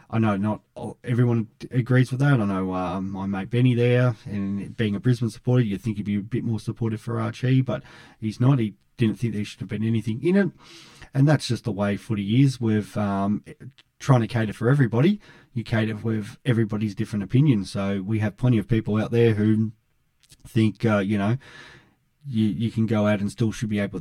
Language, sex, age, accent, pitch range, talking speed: English, male, 20-39, Australian, 105-125 Hz, 210 wpm